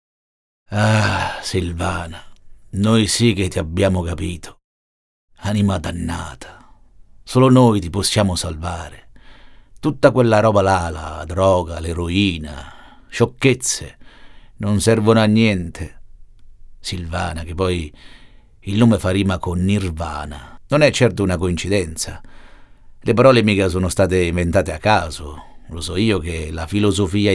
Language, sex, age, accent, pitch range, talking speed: Italian, male, 50-69, native, 85-110 Hz, 120 wpm